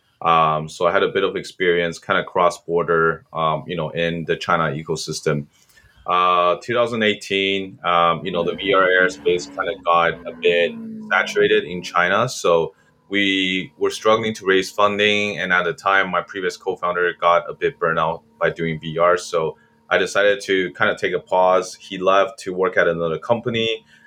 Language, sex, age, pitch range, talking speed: English, male, 20-39, 80-100 Hz, 175 wpm